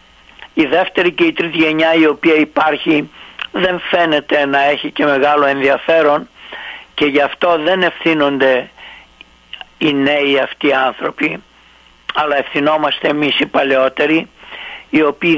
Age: 60-79